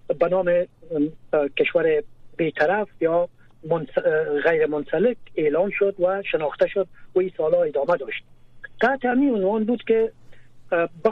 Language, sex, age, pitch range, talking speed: Persian, male, 50-69, 150-230 Hz, 120 wpm